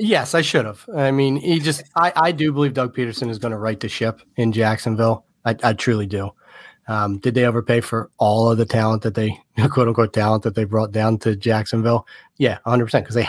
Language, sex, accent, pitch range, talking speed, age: English, male, American, 105-125 Hz, 225 wpm, 30-49